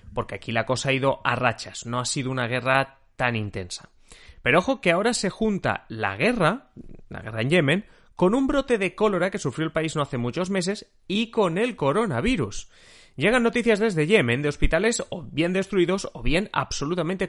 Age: 30-49